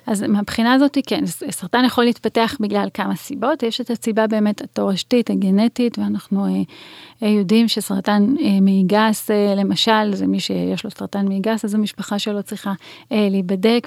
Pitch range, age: 195-230 Hz, 30-49